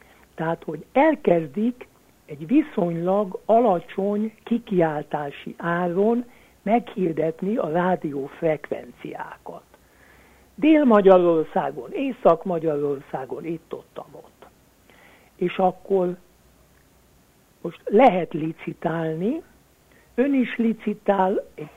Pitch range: 165-230 Hz